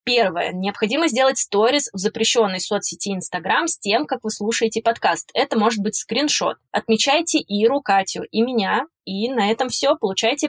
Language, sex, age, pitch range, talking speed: Russian, female, 20-39, 195-230 Hz, 160 wpm